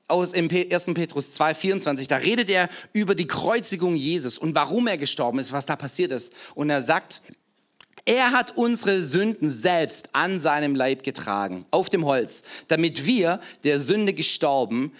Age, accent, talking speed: 40-59, German, 165 wpm